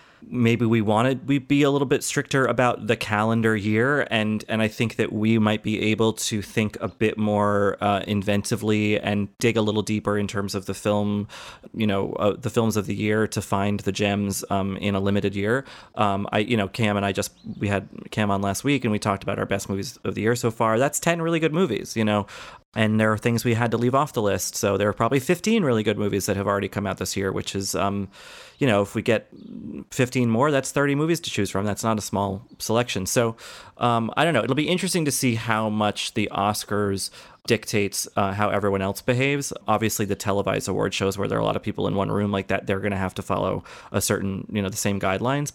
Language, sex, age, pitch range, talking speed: English, male, 30-49, 100-115 Hz, 245 wpm